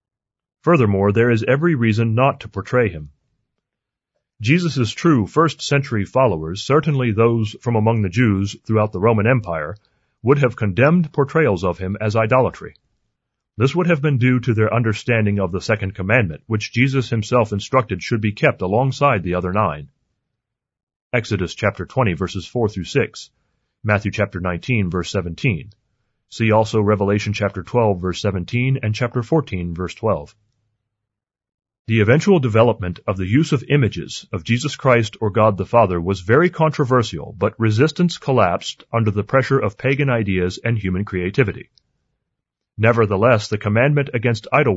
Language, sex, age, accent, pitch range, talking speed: English, male, 30-49, American, 100-130 Hz, 155 wpm